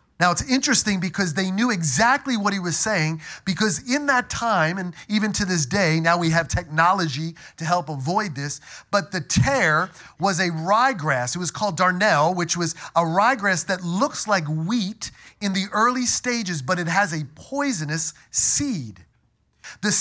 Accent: American